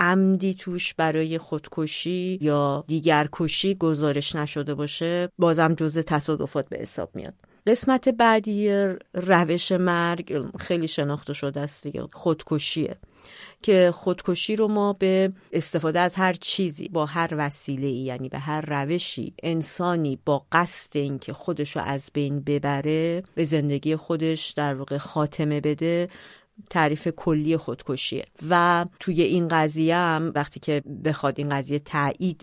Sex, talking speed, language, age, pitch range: female, 130 wpm, Persian, 40-59, 150-180 Hz